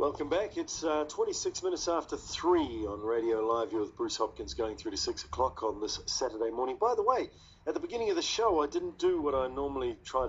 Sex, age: male, 40-59